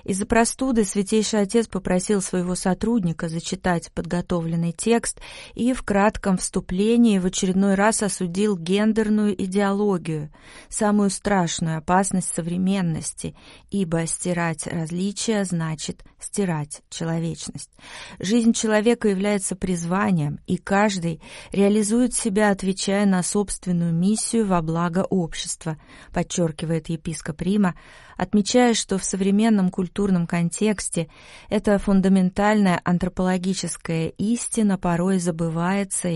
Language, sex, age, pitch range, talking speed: Russian, female, 30-49, 180-210 Hz, 105 wpm